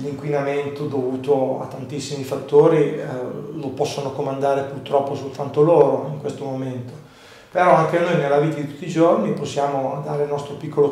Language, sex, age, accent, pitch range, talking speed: Italian, male, 40-59, native, 140-155 Hz, 160 wpm